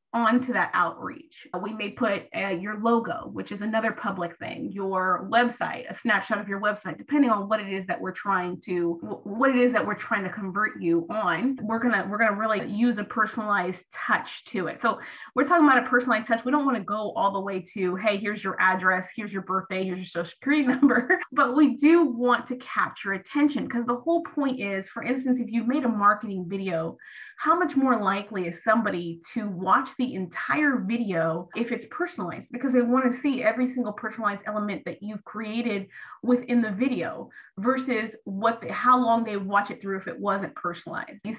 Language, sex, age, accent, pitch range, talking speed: English, female, 20-39, American, 195-245 Hz, 205 wpm